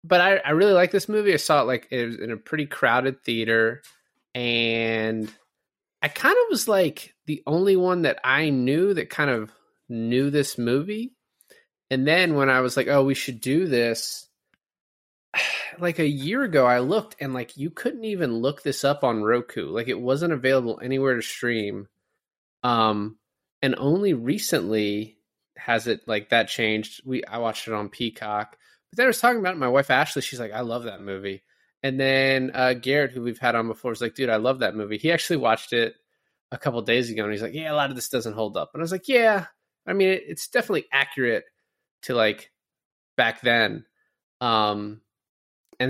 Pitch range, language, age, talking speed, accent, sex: 110-145 Hz, English, 20-39, 200 wpm, American, male